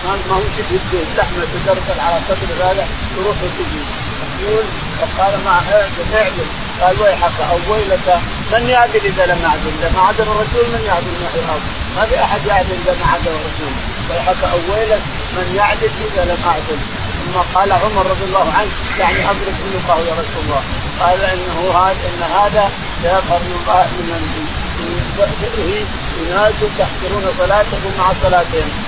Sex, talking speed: male, 150 wpm